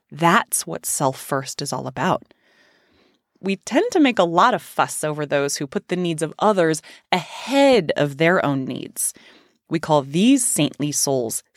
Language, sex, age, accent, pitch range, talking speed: English, female, 30-49, American, 155-235 Hz, 165 wpm